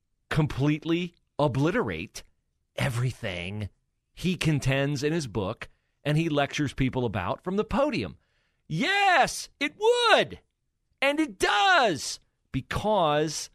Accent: American